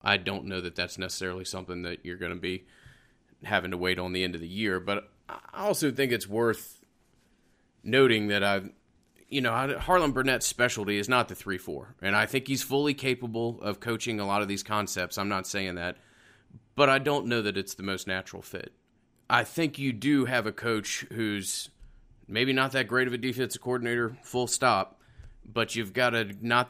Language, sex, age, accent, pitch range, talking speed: English, male, 30-49, American, 95-115 Hz, 200 wpm